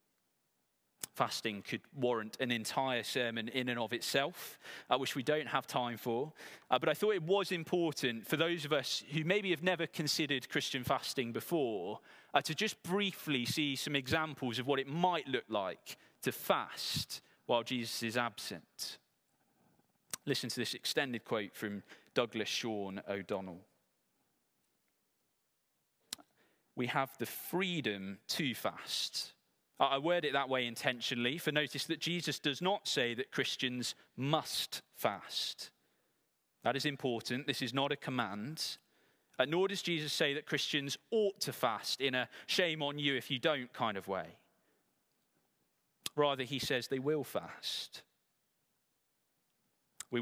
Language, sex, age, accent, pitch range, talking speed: English, male, 20-39, British, 120-155 Hz, 145 wpm